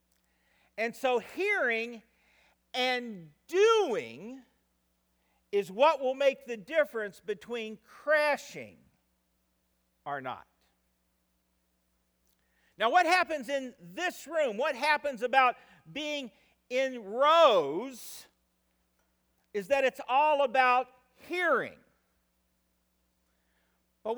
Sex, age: male, 50-69